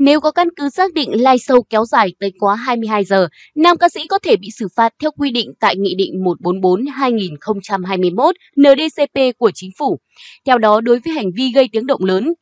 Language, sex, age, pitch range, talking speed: Vietnamese, female, 20-39, 205-280 Hz, 205 wpm